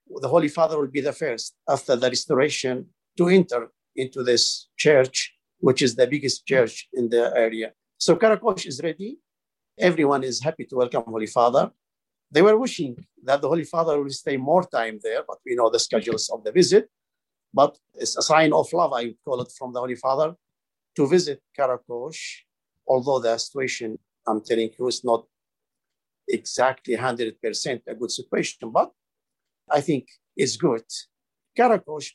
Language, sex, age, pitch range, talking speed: English, male, 50-69, 125-175 Hz, 165 wpm